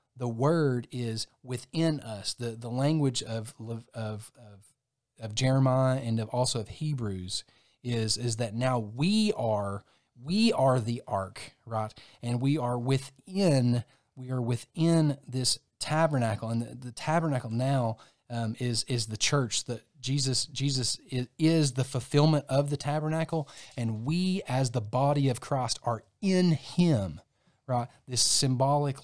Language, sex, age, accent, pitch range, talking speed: English, male, 30-49, American, 115-135 Hz, 145 wpm